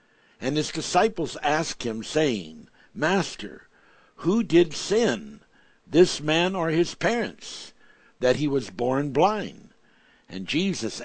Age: 60-79